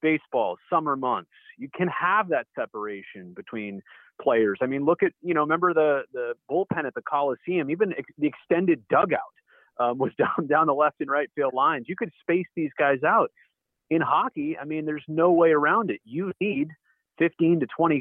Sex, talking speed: male, 195 wpm